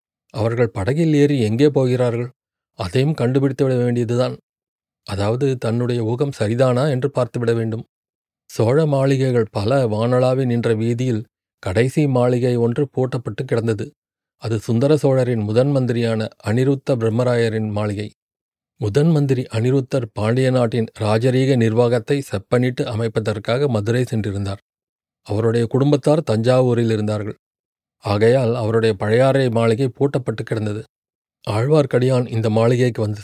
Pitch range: 110-135 Hz